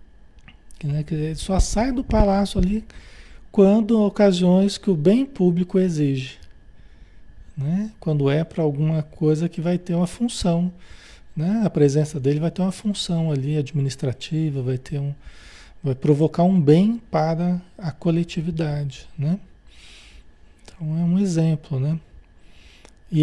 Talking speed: 130 wpm